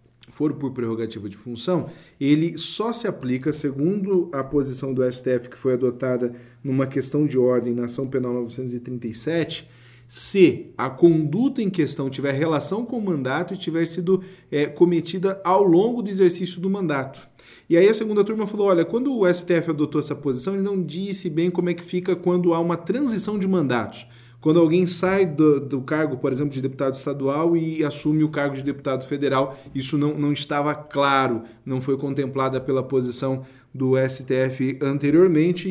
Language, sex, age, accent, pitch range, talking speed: Portuguese, male, 40-59, Brazilian, 130-170 Hz, 175 wpm